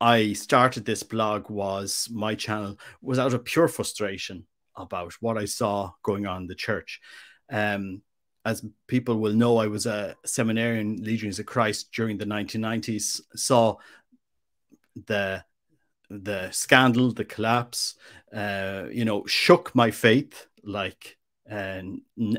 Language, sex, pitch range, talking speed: English, male, 105-125 Hz, 135 wpm